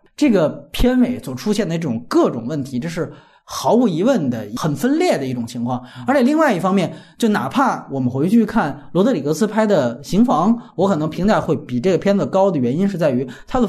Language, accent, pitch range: Chinese, native, 165-255 Hz